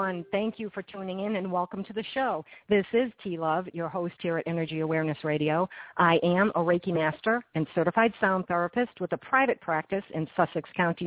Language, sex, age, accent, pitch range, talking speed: English, female, 50-69, American, 165-210 Hz, 195 wpm